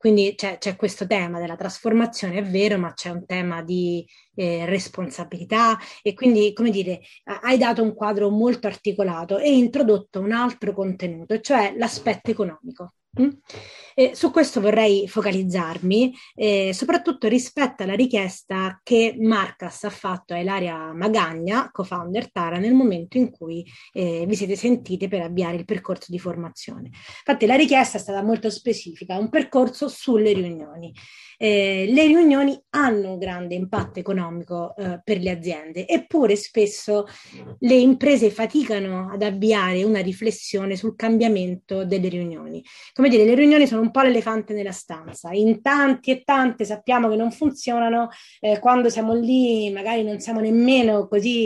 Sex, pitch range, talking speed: female, 190-235 Hz, 150 wpm